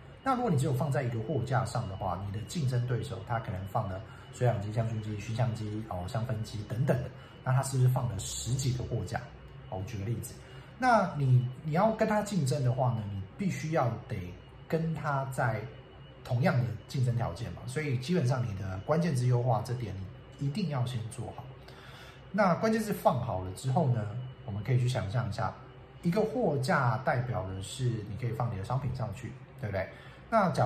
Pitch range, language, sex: 110-135 Hz, Chinese, male